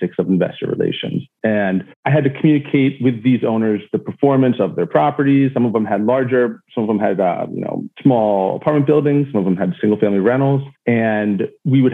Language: English